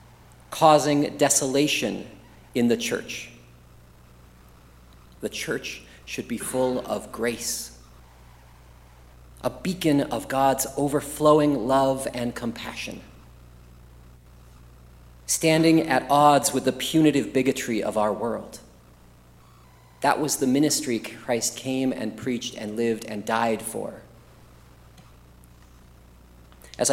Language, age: English, 40-59